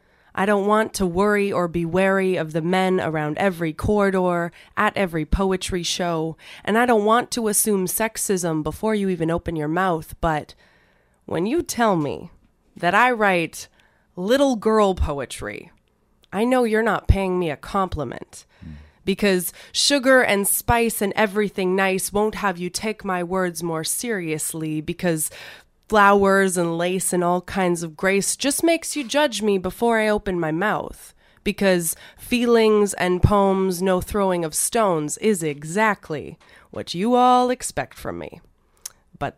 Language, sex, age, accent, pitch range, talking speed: English, female, 20-39, American, 175-220 Hz, 155 wpm